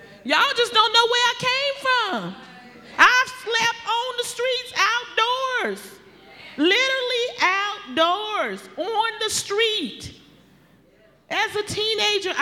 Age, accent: 40-59, American